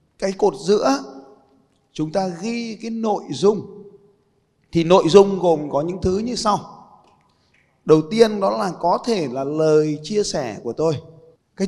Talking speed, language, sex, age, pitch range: 160 wpm, Vietnamese, male, 20-39, 145-205 Hz